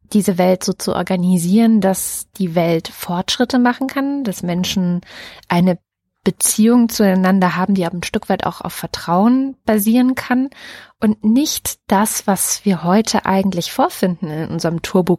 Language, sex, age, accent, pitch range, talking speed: German, female, 20-39, German, 180-215 Hz, 145 wpm